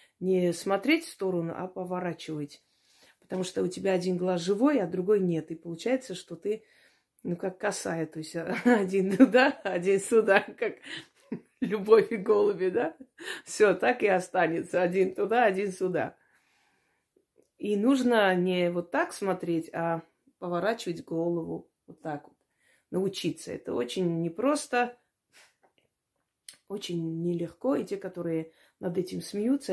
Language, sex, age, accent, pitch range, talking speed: Russian, female, 30-49, native, 170-220 Hz, 130 wpm